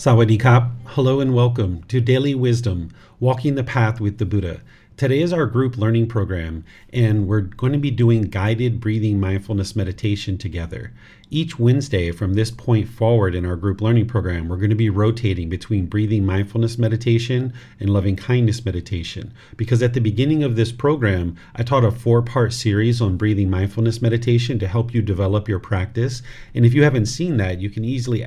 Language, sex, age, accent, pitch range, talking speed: English, male, 40-59, American, 100-120 Hz, 175 wpm